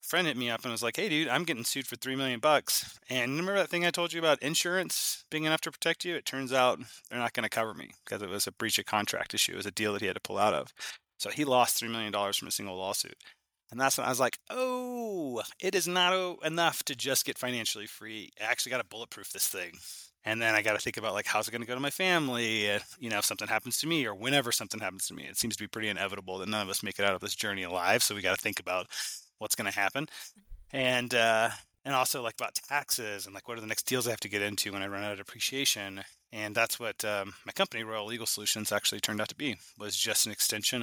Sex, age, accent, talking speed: male, 30-49, American, 280 wpm